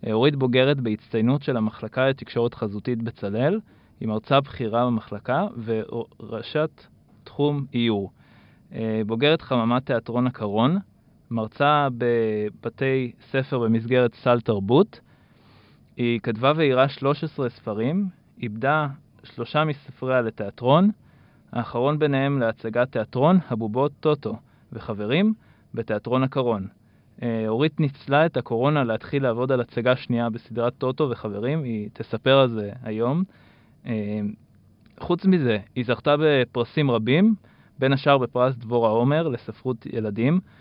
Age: 20-39